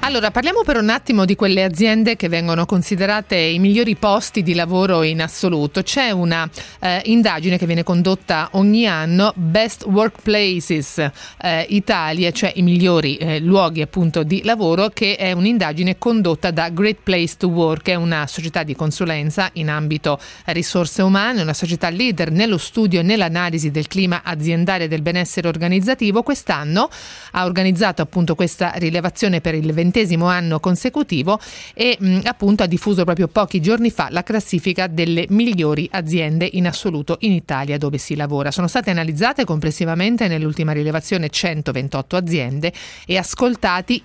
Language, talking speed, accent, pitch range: Italian, 155 wpm, native, 160-205 Hz